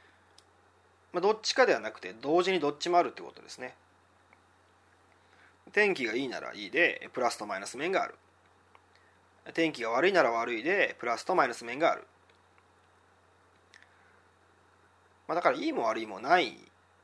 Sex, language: male, Japanese